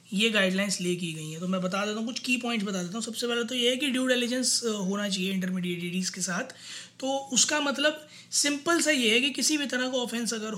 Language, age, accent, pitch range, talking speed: Hindi, 20-39, native, 195-240 Hz, 245 wpm